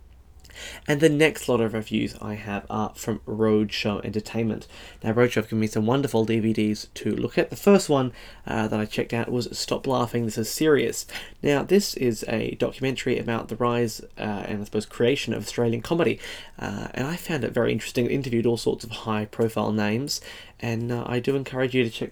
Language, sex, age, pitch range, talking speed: English, male, 10-29, 110-120 Hz, 205 wpm